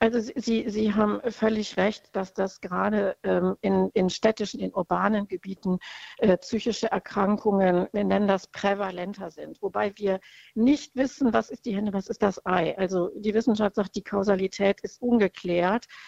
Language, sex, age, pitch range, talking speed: German, female, 60-79, 200-230 Hz, 155 wpm